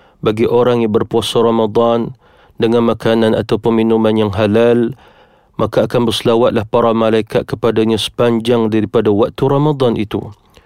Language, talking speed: Malay, 125 wpm